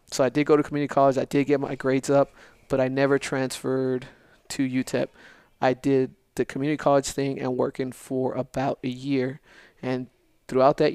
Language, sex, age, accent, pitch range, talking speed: English, male, 20-39, American, 125-145 Hz, 185 wpm